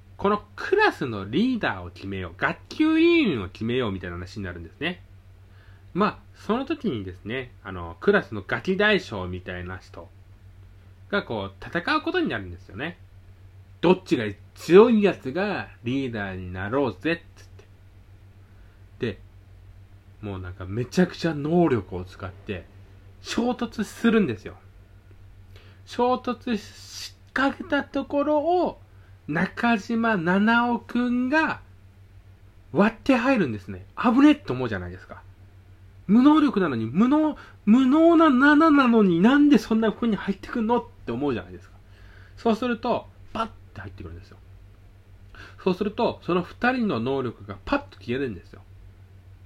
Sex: male